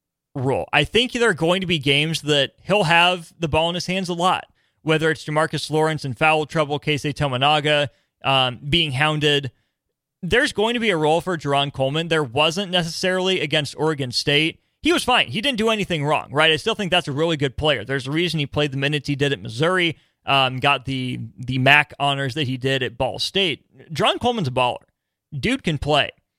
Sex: male